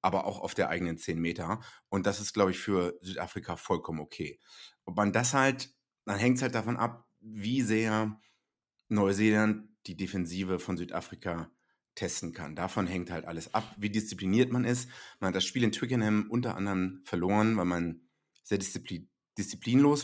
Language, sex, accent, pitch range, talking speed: German, male, German, 90-115 Hz, 170 wpm